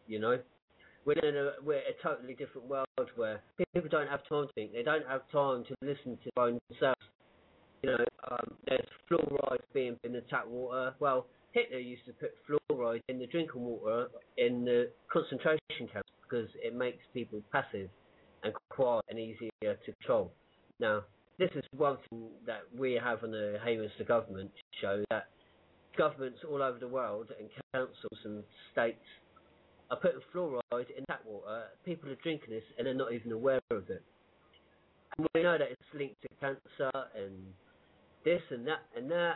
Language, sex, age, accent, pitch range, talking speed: English, male, 30-49, British, 120-150 Hz, 180 wpm